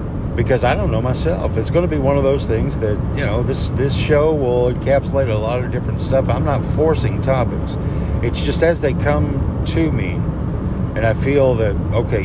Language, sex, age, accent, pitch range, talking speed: English, male, 60-79, American, 95-125 Hz, 205 wpm